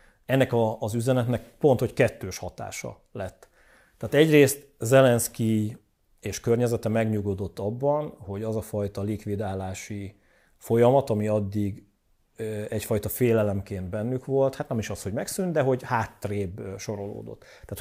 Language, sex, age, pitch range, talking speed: Hungarian, male, 40-59, 100-125 Hz, 130 wpm